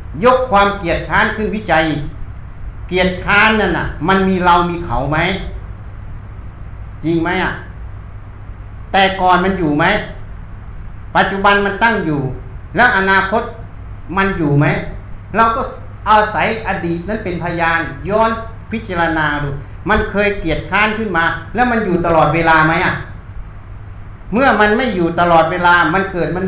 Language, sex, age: Thai, male, 60-79